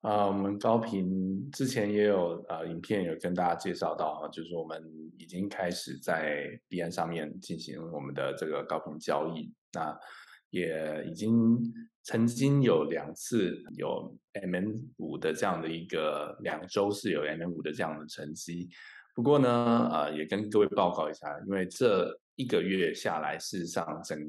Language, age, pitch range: Chinese, 20-39, 80-120 Hz